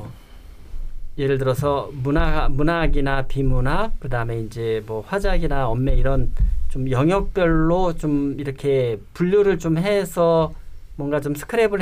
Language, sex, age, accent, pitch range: Korean, male, 40-59, native, 125-155 Hz